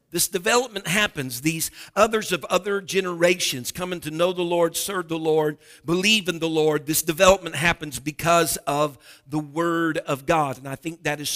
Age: 50-69